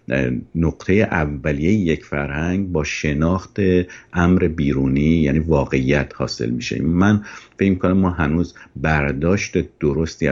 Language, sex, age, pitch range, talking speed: Persian, male, 50-69, 75-100 Hz, 110 wpm